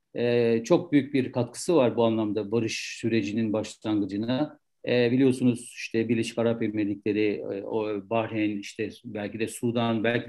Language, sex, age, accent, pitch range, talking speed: Turkish, male, 60-79, native, 120-150 Hz, 120 wpm